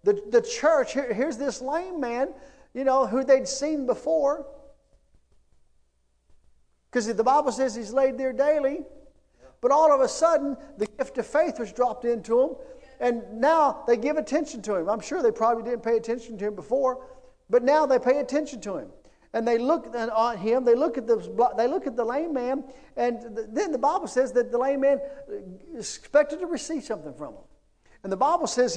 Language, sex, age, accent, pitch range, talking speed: English, male, 50-69, American, 225-280 Hz, 200 wpm